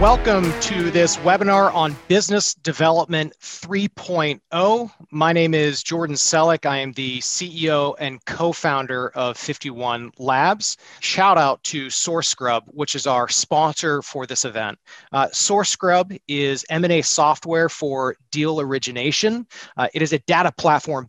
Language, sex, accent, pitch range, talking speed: English, male, American, 135-175 Hz, 150 wpm